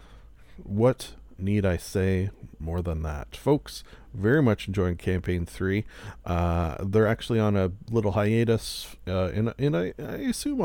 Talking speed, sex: 135 wpm, male